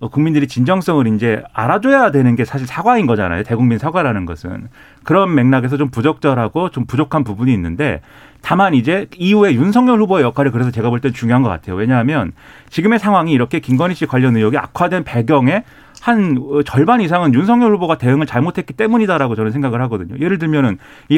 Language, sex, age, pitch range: Korean, male, 30-49, 120-170 Hz